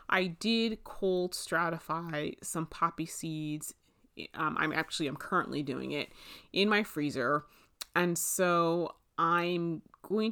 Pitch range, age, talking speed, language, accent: 155-195 Hz, 30-49, 120 wpm, English, American